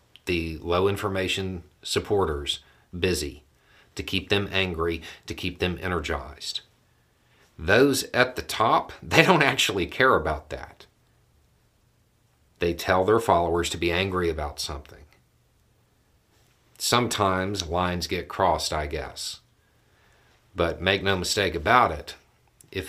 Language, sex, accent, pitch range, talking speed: English, male, American, 80-100 Hz, 120 wpm